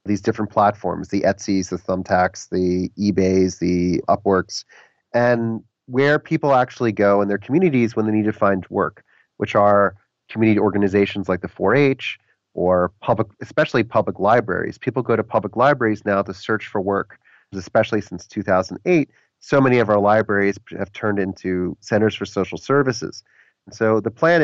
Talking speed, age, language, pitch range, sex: 160 wpm, 30-49, English, 100-130 Hz, male